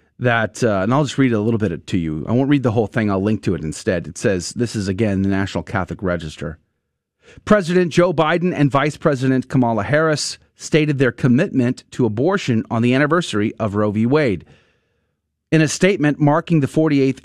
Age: 30-49